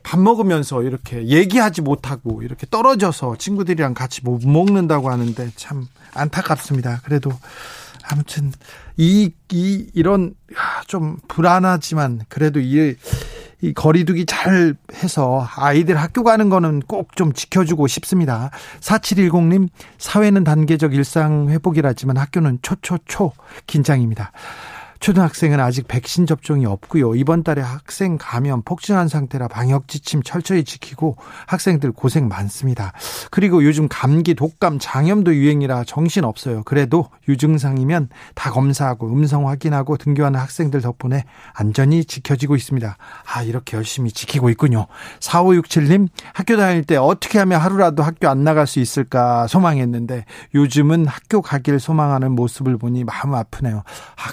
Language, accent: Korean, native